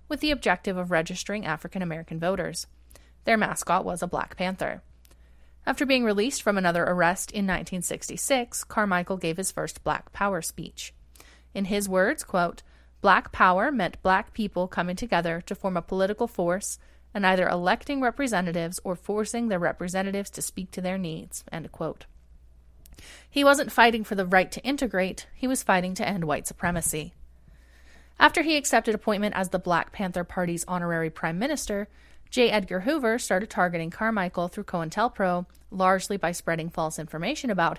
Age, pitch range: 30-49, 165-205 Hz